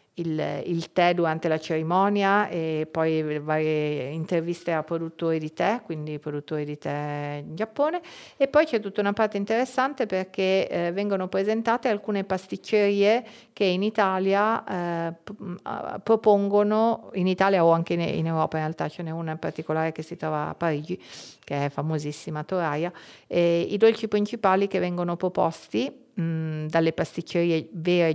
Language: Italian